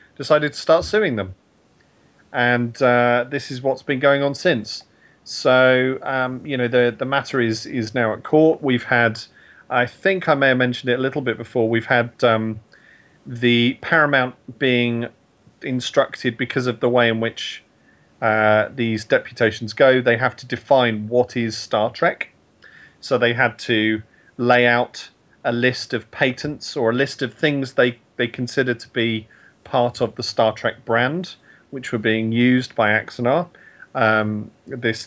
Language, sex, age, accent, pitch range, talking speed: English, male, 40-59, British, 115-135 Hz, 170 wpm